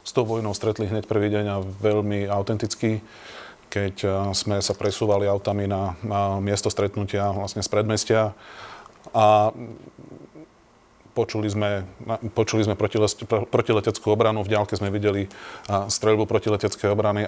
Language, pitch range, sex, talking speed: Slovak, 95-105 Hz, male, 130 wpm